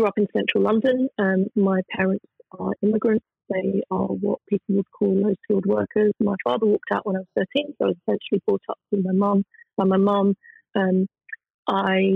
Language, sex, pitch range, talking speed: English, female, 205-255 Hz, 195 wpm